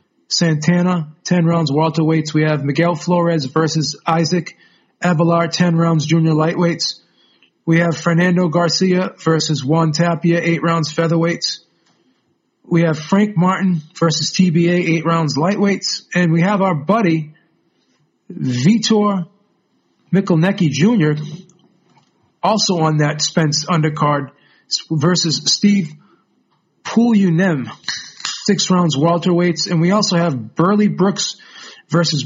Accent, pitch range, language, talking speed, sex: American, 155-185 Hz, English, 115 wpm, male